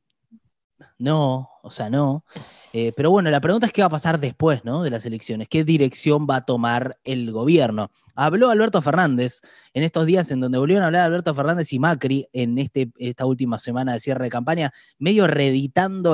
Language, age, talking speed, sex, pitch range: Spanish, 20-39, 195 wpm, male, 130-175 Hz